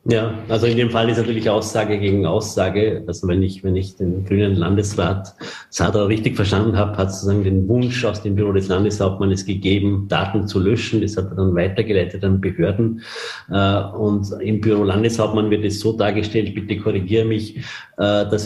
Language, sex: German, male